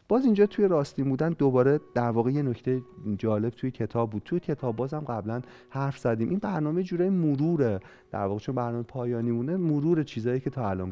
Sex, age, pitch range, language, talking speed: male, 40-59, 110-170 Hz, Persian, 185 wpm